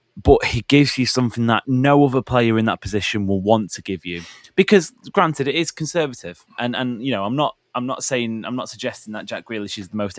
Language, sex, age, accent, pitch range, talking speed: English, male, 20-39, British, 100-125 Hz, 235 wpm